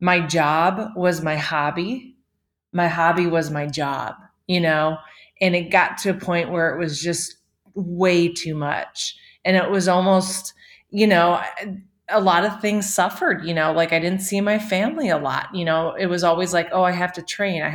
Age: 30-49